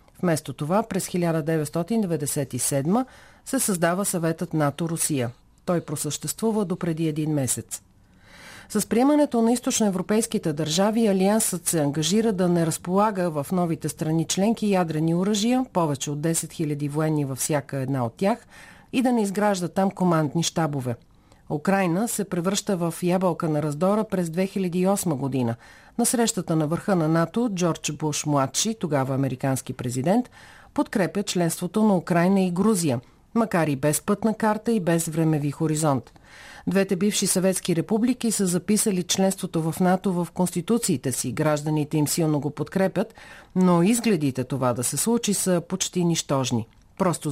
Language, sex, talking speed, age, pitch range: Bulgarian, female, 140 wpm, 50-69, 150-195 Hz